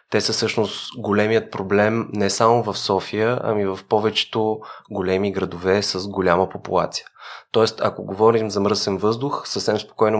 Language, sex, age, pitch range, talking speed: Bulgarian, male, 20-39, 95-115 Hz, 145 wpm